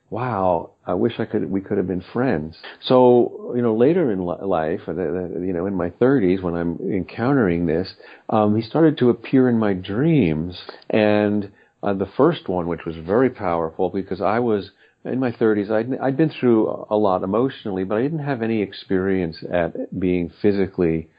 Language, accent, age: English, American, 50-69